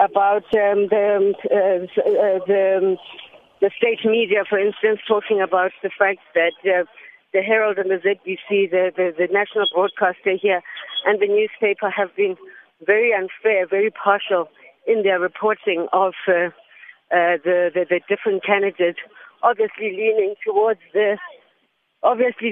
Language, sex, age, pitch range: English, female, 50-69, 190-215 Hz